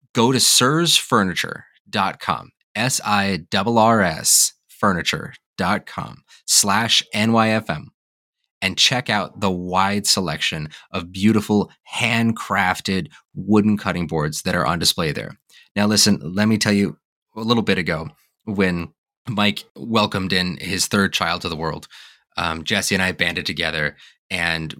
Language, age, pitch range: English, 30-49, 90-105 Hz